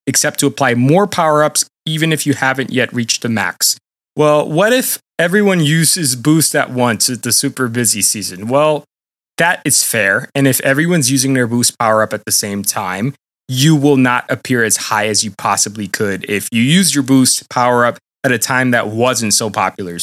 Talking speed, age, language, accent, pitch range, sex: 190 wpm, 20-39, English, American, 115-145 Hz, male